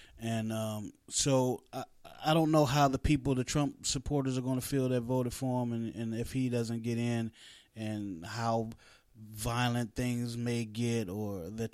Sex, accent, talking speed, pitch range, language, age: male, American, 185 wpm, 110-130 Hz, English, 20-39